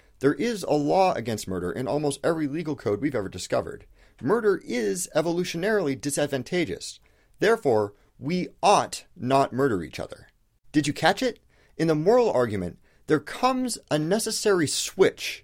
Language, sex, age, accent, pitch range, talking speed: English, male, 40-59, American, 110-165 Hz, 150 wpm